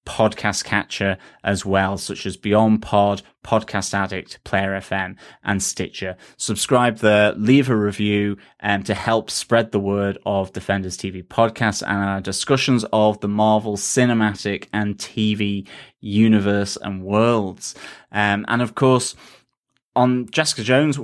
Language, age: English, 20-39